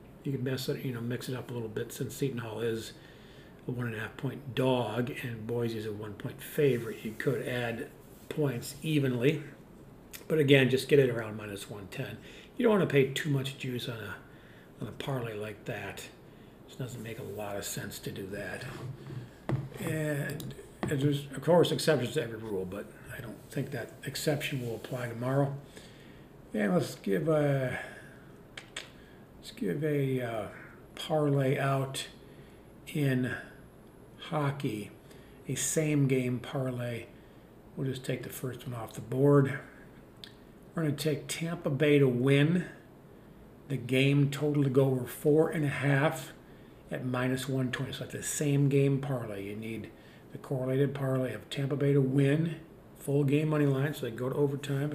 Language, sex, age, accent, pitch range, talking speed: English, male, 50-69, American, 125-145 Hz, 170 wpm